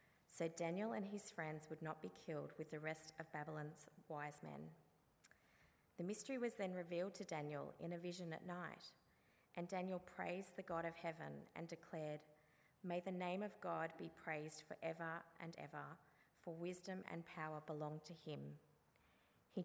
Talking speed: 170 wpm